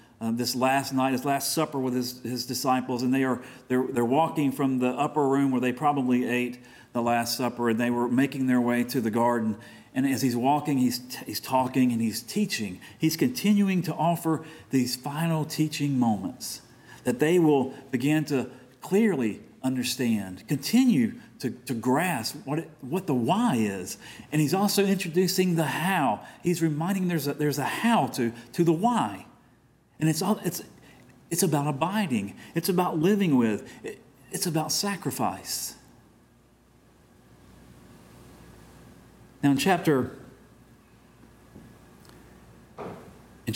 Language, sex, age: English, male, 40-59